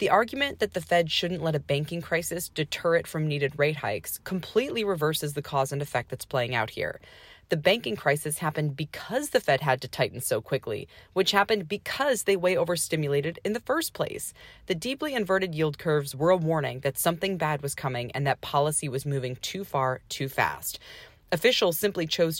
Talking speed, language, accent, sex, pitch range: 195 wpm, English, American, female, 145-200 Hz